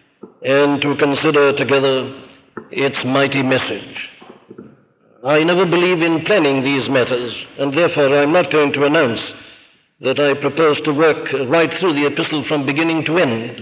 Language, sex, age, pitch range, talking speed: English, male, 60-79, 135-160 Hz, 150 wpm